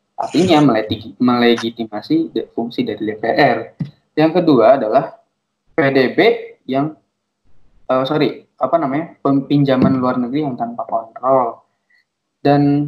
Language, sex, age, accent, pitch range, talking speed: Indonesian, male, 20-39, native, 135-195 Hz, 100 wpm